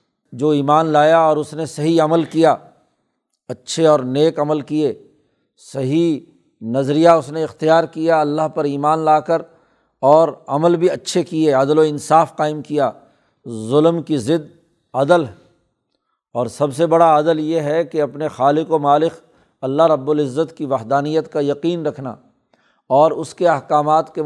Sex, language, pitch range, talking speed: male, Urdu, 145-165 Hz, 160 wpm